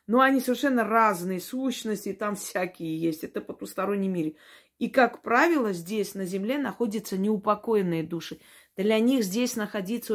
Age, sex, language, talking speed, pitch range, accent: 30-49, female, Russian, 140 wpm, 185-235 Hz, native